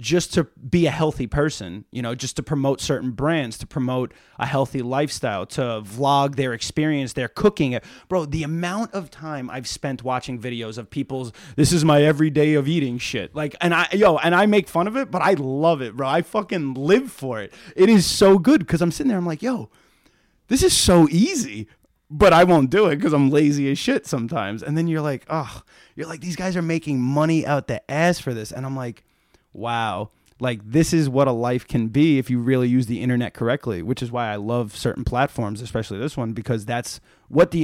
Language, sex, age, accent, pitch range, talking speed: English, male, 30-49, American, 120-155 Hz, 220 wpm